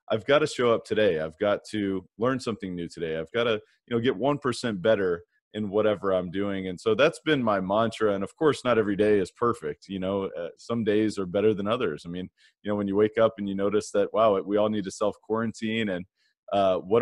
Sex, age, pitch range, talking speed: male, 30-49, 100-120 Hz, 245 wpm